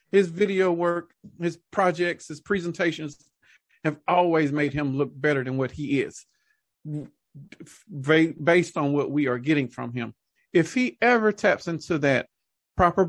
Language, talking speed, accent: English, 145 wpm, American